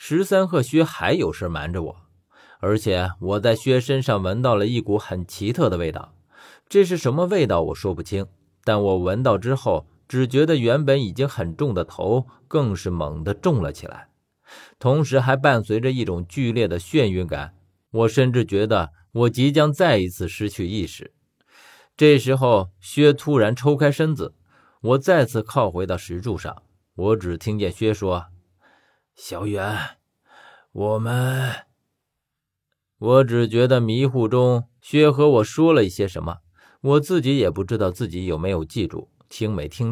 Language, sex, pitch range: Chinese, male, 95-135 Hz